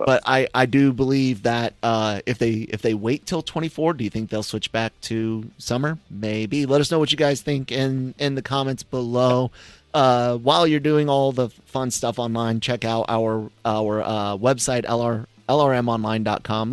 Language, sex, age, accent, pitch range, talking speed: English, male, 30-49, American, 110-125 Hz, 190 wpm